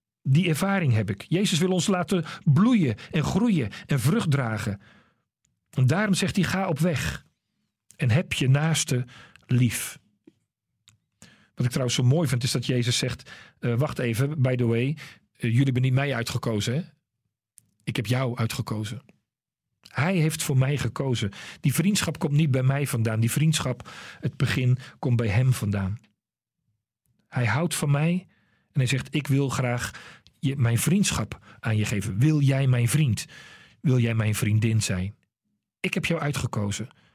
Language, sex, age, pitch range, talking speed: Dutch, male, 40-59, 115-160 Hz, 165 wpm